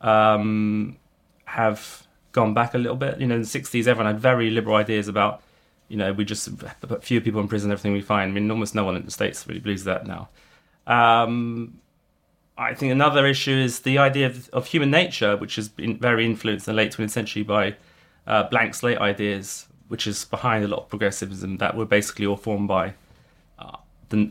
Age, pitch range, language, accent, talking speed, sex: 30-49, 100-120 Hz, English, British, 205 wpm, male